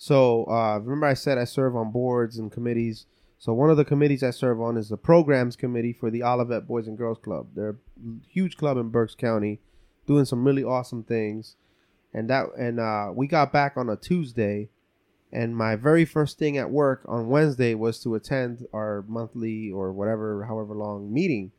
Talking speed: 195 wpm